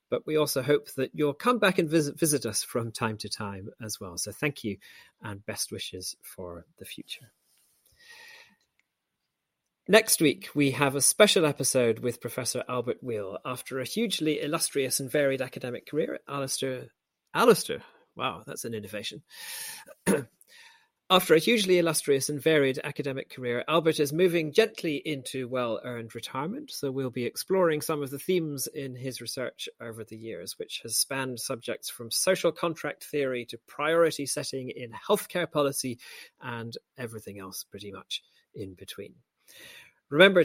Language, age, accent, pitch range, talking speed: English, 40-59, British, 115-165 Hz, 155 wpm